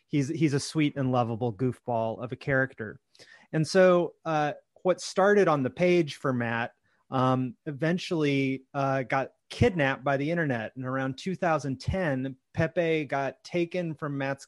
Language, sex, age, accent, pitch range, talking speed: English, male, 30-49, American, 130-160 Hz, 150 wpm